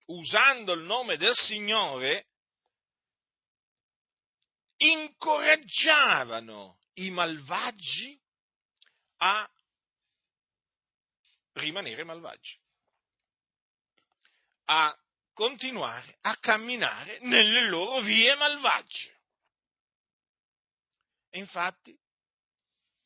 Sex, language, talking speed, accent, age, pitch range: male, Italian, 55 wpm, native, 50-69, 140-225 Hz